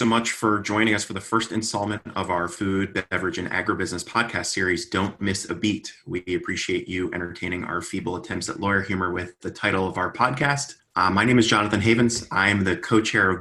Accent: American